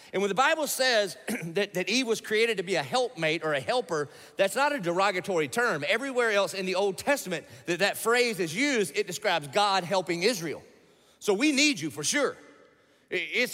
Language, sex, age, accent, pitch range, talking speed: English, male, 40-59, American, 165-230 Hz, 195 wpm